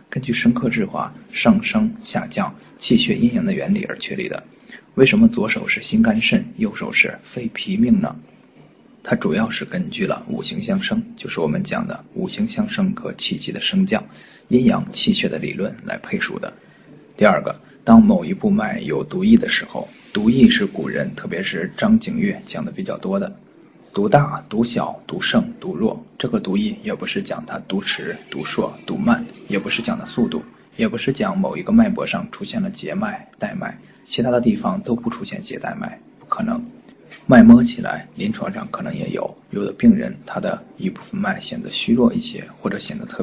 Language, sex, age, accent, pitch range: Chinese, male, 20-39, native, 200-230 Hz